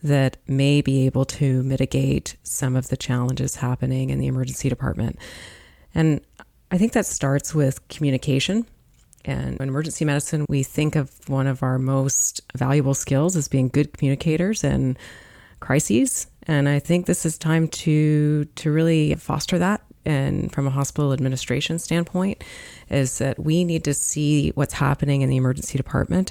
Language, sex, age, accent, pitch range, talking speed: English, female, 30-49, American, 130-155 Hz, 160 wpm